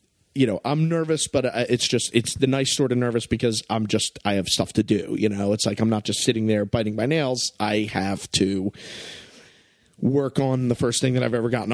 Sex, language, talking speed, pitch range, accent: male, English, 230 wpm, 100-130 Hz, American